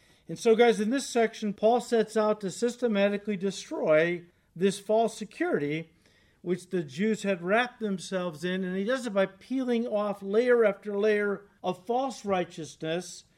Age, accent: 50-69, American